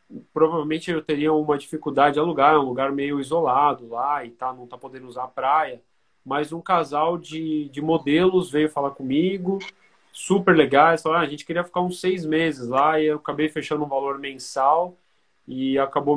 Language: Portuguese